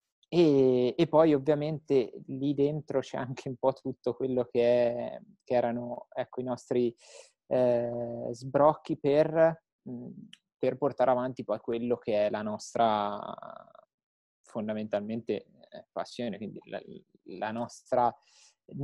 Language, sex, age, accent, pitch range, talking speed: Italian, male, 20-39, native, 120-145 Hz, 110 wpm